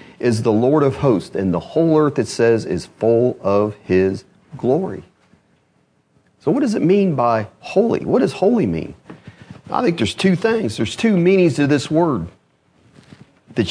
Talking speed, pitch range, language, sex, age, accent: 170 wpm, 110-150 Hz, English, male, 40-59, American